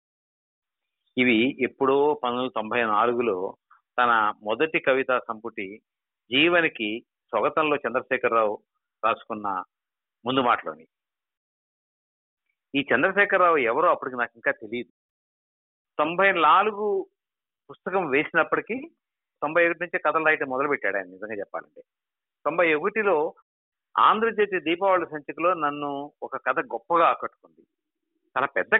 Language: Telugu